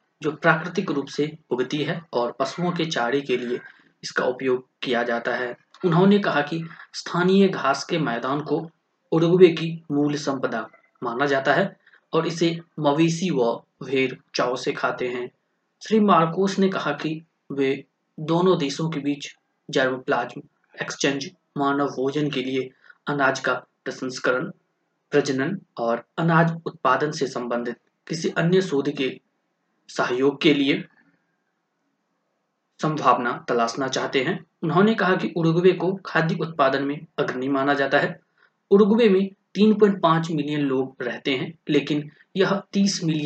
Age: 20-39